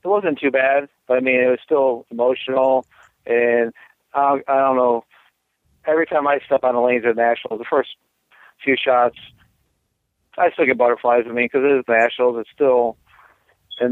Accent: American